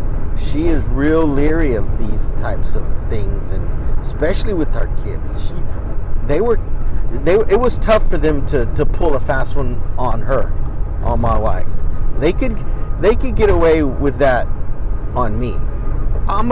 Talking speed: 165 wpm